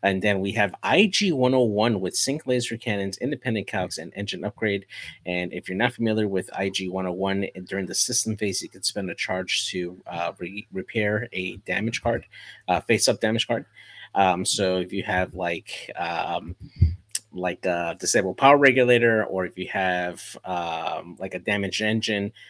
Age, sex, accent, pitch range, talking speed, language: 30-49, male, American, 90-110 Hz, 175 wpm, English